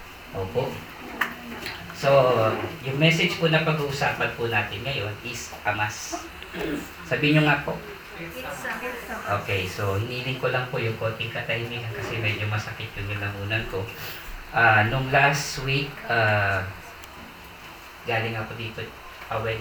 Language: Filipino